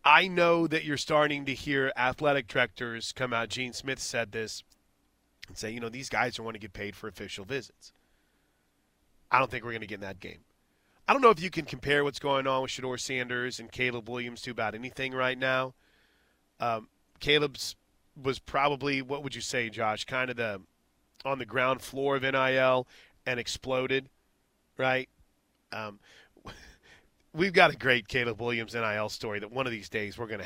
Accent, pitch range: American, 120-160 Hz